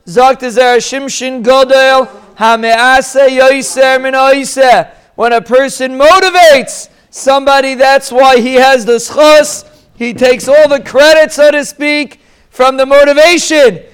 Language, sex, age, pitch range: English, male, 40-59, 250-290 Hz